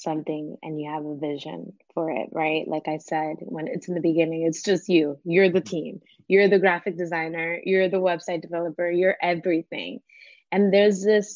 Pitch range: 165-190 Hz